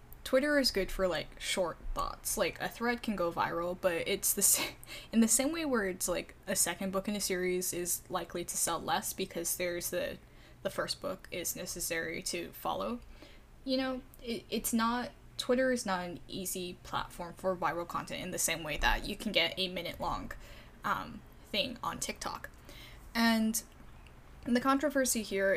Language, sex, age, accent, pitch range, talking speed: English, female, 10-29, American, 185-230 Hz, 185 wpm